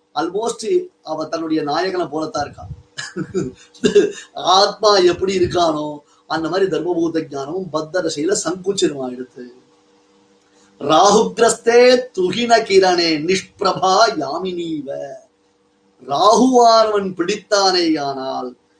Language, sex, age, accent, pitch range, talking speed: Tamil, male, 30-49, native, 150-230 Hz, 35 wpm